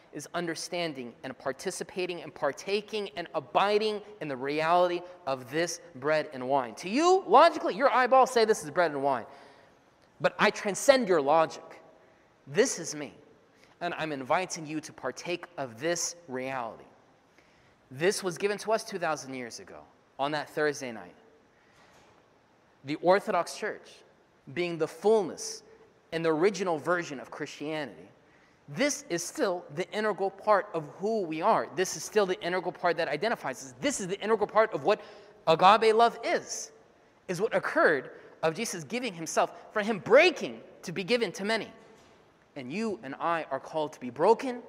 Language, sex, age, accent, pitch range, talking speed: English, male, 30-49, American, 150-210 Hz, 160 wpm